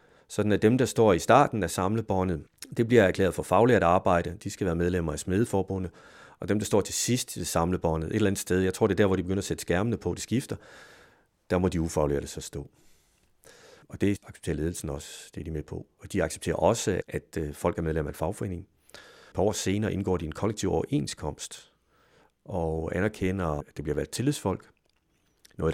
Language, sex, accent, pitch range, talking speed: Danish, male, native, 85-105 Hz, 210 wpm